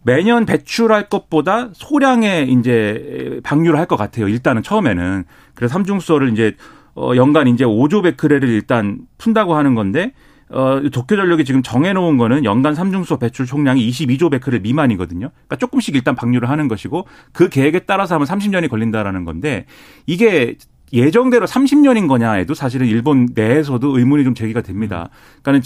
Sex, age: male, 40-59